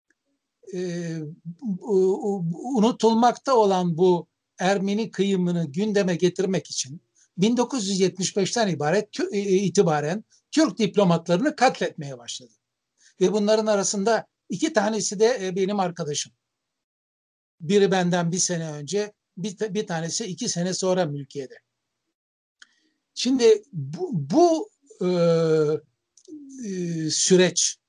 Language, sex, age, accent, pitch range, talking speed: Turkish, male, 60-79, native, 165-220 Hz, 80 wpm